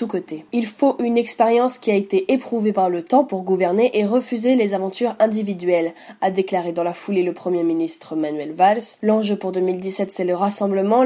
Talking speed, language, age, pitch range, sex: 185 wpm, French, 20-39, 180-210 Hz, female